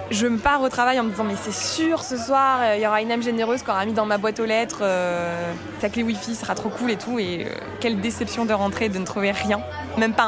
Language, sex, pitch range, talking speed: French, female, 205-245 Hz, 285 wpm